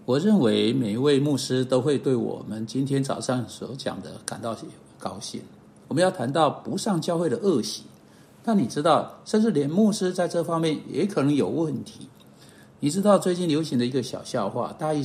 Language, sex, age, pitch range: Chinese, male, 60-79, 135-205 Hz